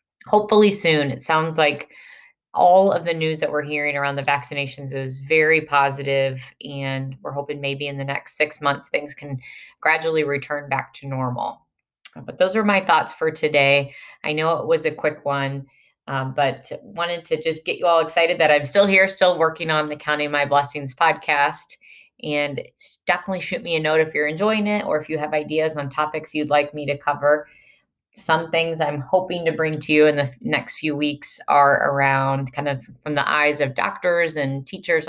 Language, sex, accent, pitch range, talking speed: English, female, American, 140-160 Hz, 195 wpm